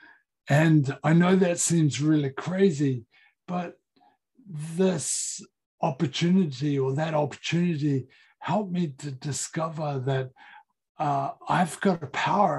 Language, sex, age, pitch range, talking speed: English, male, 60-79, 135-170 Hz, 110 wpm